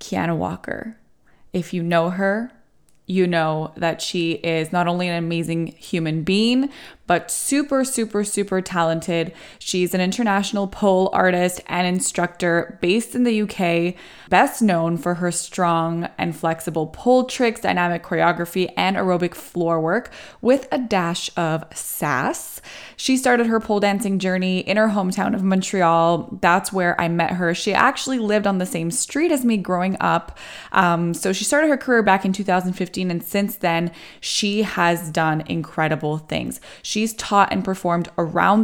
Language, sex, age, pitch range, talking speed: English, female, 20-39, 170-210 Hz, 160 wpm